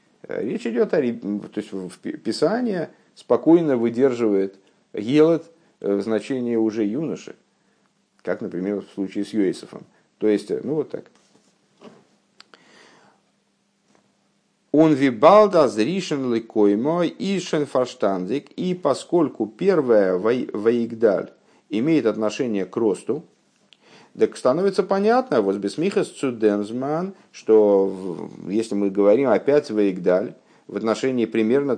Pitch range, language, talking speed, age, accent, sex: 100-145 Hz, Russian, 90 wpm, 50-69, native, male